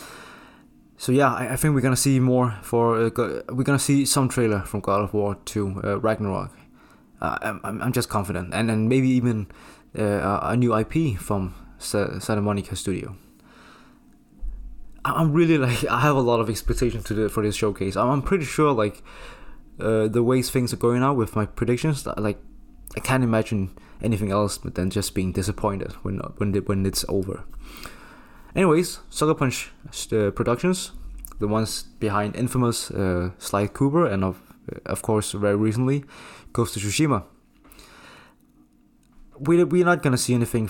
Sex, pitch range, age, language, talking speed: male, 100-125 Hz, 20-39, English, 170 wpm